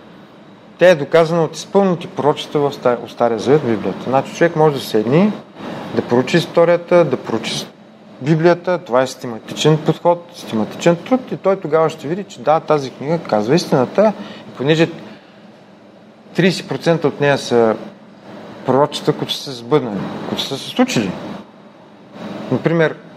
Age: 30-49